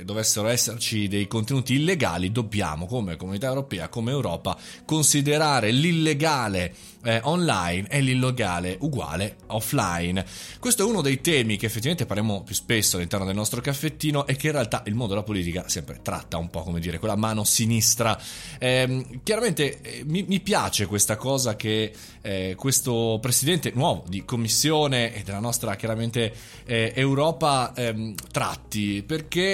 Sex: male